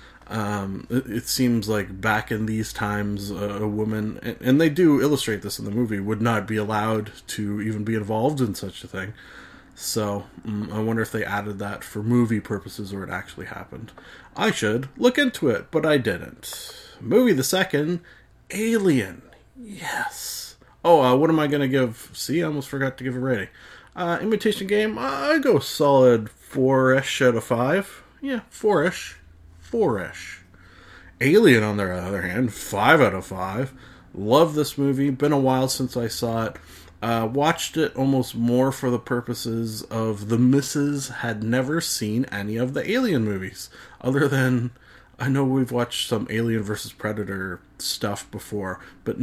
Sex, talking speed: male, 170 wpm